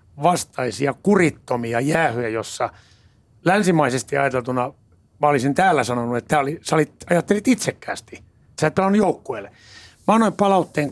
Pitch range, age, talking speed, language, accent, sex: 115-165 Hz, 60-79, 110 wpm, Finnish, native, male